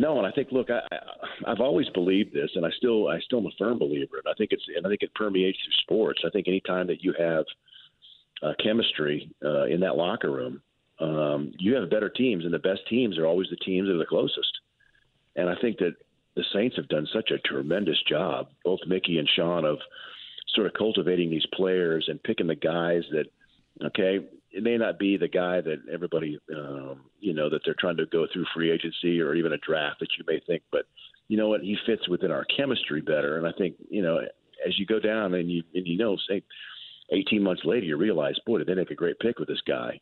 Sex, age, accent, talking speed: male, 50-69, American, 230 wpm